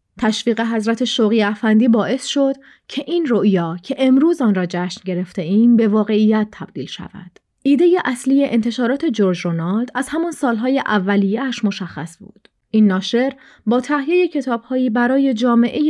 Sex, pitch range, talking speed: female, 205-250 Hz, 145 wpm